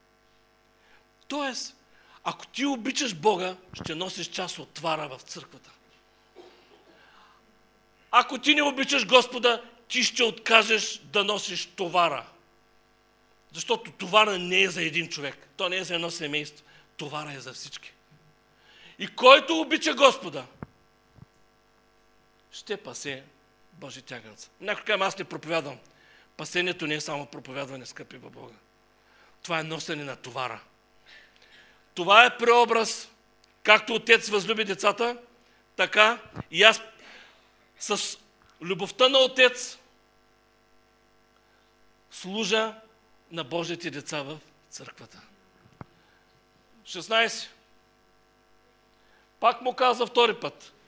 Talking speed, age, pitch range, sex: 105 wpm, 40-59, 155-235 Hz, male